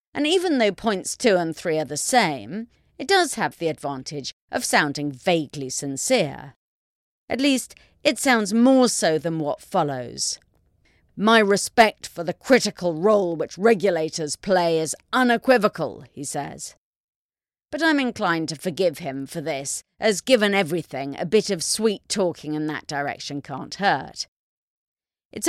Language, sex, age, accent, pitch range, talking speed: English, female, 40-59, British, 150-215 Hz, 150 wpm